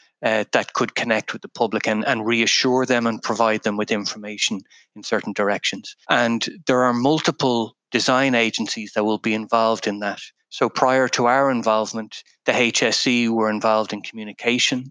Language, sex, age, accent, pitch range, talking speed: English, male, 30-49, Irish, 110-125 Hz, 170 wpm